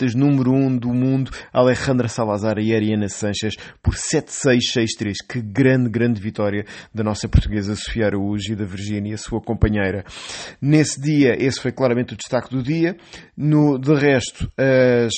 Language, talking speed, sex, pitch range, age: English, 155 wpm, male, 105-125 Hz, 20-39